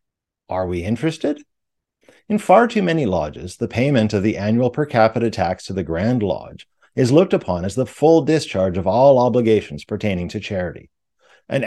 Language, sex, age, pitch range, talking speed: English, male, 50-69, 100-145 Hz, 175 wpm